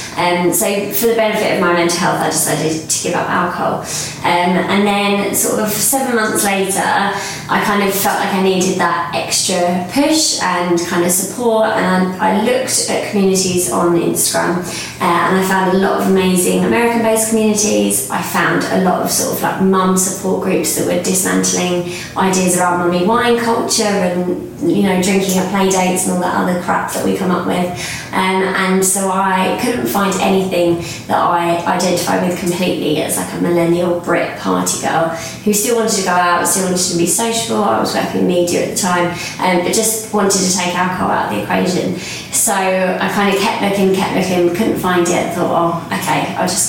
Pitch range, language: 175-200 Hz, English